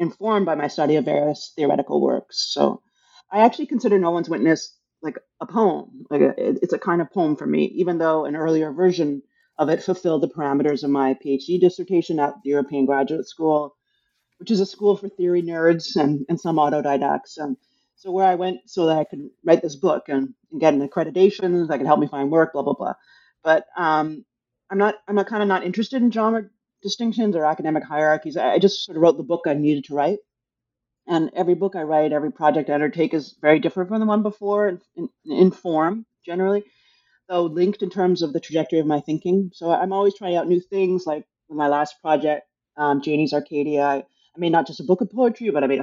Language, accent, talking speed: English, American, 215 wpm